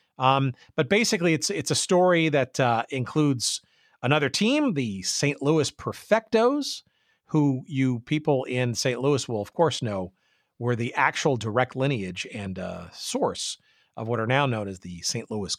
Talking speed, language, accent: 165 wpm, English, American